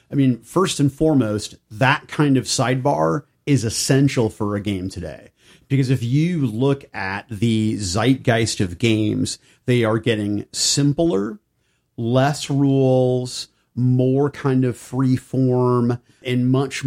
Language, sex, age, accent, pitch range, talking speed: English, male, 40-59, American, 110-135 Hz, 130 wpm